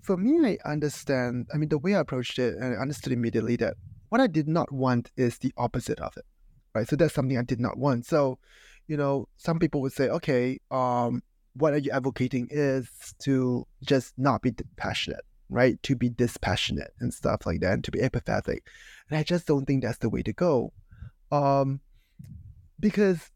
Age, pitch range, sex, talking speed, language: 20-39, 125-165 Hz, male, 195 wpm, English